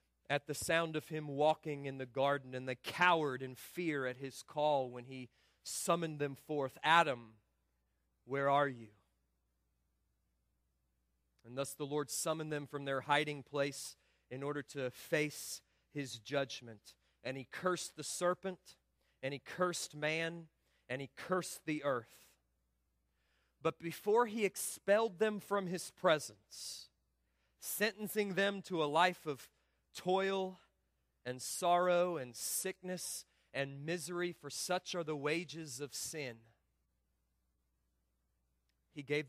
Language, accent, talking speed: English, American, 130 wpm